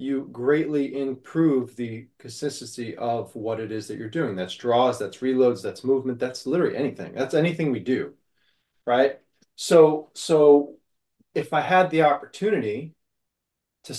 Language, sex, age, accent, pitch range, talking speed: English, male, 30-49, American, 120-145 Hz, 145 wpm